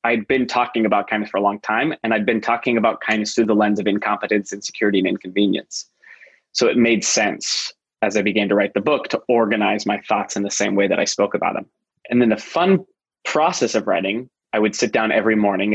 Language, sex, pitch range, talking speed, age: English, male, 105-120 Hz, 235 wpm, 20-39